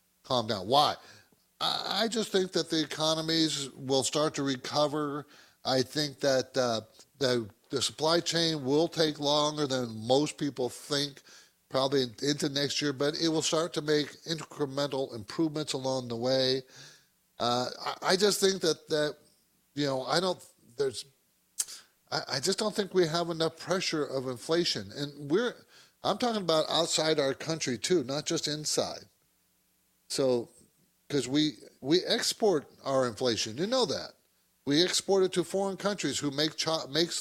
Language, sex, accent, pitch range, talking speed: English, male, American, 130-165 Hz, 155 wpm